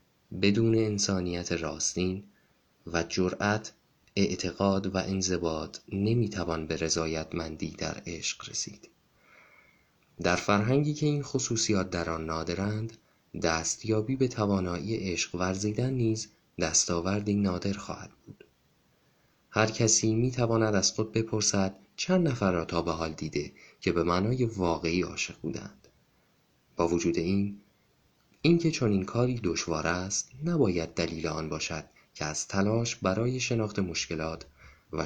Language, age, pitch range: Persian, 30-49, 85-115 Hz